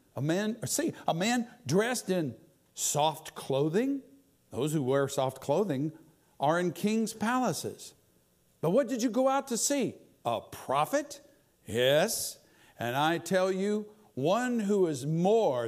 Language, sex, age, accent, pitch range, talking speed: English, male, 60-79, American, 135-215 Hz, 140 wpm